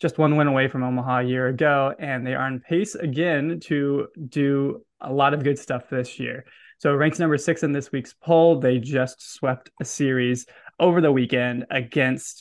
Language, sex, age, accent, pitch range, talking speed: English, male, 20-39, American, 130-165 Hz, 200 wpm